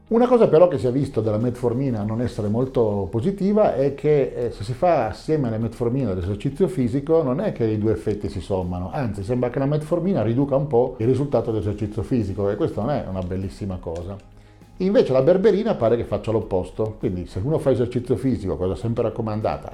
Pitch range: 95-130 Hz